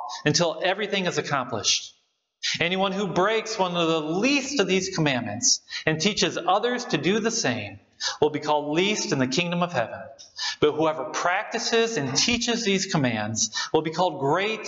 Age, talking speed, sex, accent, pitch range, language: 40-59, 170 wpm, male, American, 140-195 Hz, English